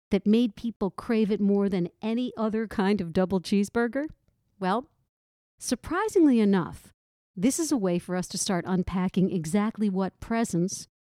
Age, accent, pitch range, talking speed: 50-69, American, 180-225 Hz, 150 wpm